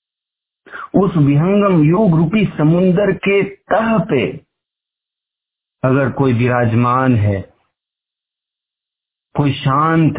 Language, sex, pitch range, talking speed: Hindi, male, 115-145 Hz, 80 wpm